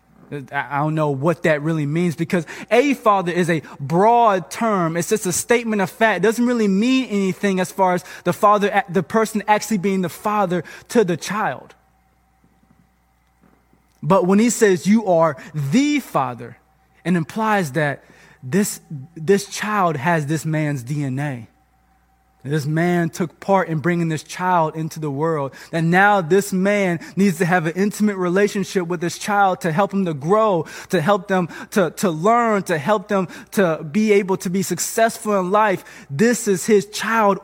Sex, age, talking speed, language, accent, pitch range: male, 20-39, 170 wpm, English, American, 165-210 Hz